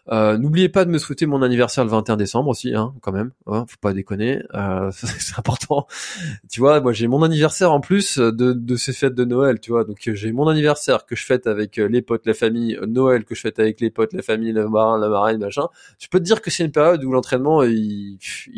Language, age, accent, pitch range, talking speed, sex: French, 20-39, French, 105-135 Hz, 235 wpm, male